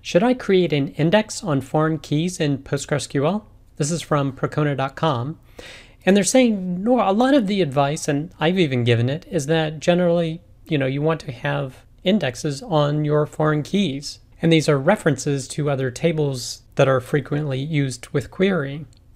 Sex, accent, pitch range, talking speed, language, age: male, American, 125-155 Hz, 170 wpm, English, 40-59